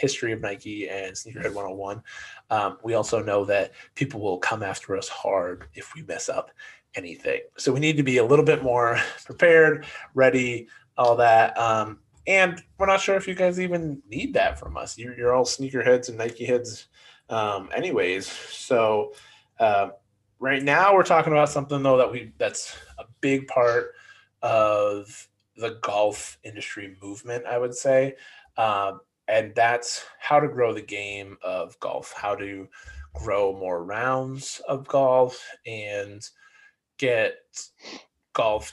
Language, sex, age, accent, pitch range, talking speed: English, male, 20-39, American, 105-145 Hz, 160 wpm